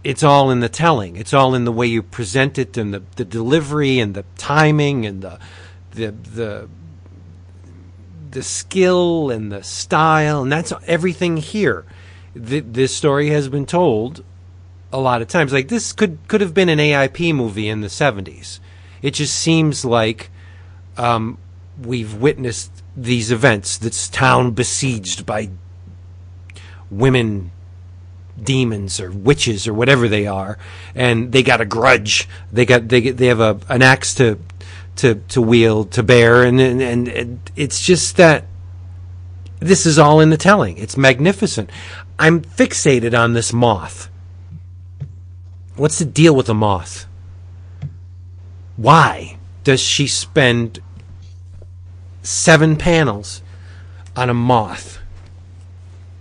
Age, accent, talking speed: 40-59, American, 140 wpm